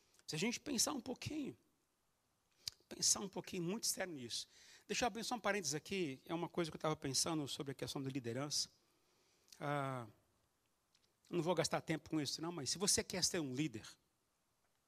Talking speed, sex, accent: 185 wpm, male, Brazilian